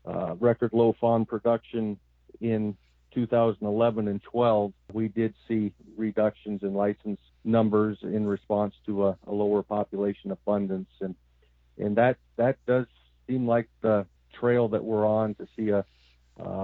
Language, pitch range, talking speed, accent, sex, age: English, 100-115 Hz, 145 wpm, American, male, 50-69